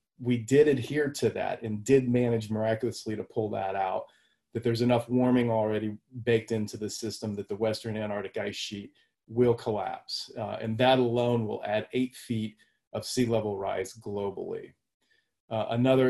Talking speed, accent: 170 wpm, American